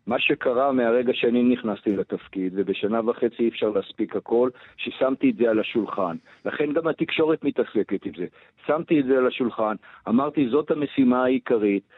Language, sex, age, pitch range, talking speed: Hebrew, male, 50-69, 125-170 Hz, 160 wpm